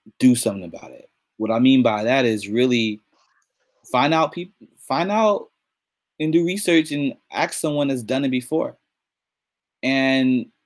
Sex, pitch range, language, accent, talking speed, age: male, 115-145 Hz, English, American, 150 wpm, 20-39